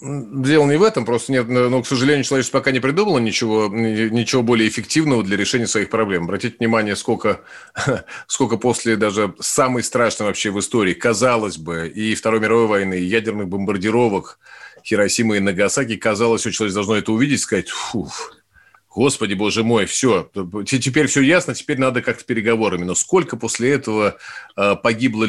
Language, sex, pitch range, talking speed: Russian, male, 110-135 Hz, 165 wpm